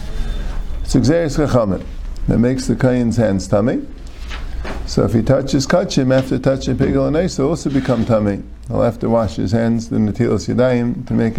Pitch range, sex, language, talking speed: 100-150 Hz, male, English, 165 wpm